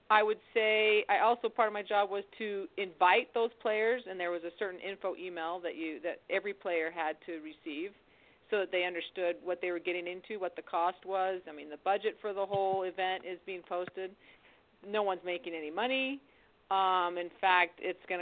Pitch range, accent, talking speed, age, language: 180-225 Hz, American, 210 wpm, 40-59, English